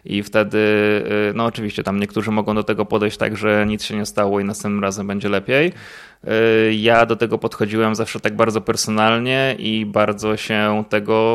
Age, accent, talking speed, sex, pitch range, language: 20-39, native, 175 wpm, male, 105-115 Hz, Polish